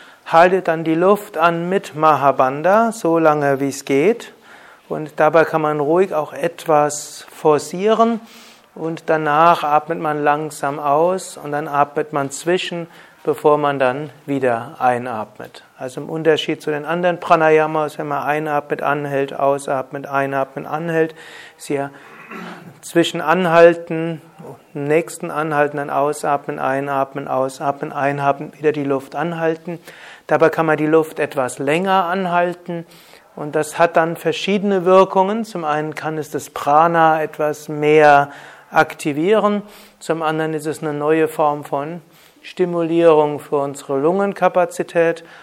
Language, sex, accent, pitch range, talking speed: German, male, German, 145-170 Hz, 130 wpm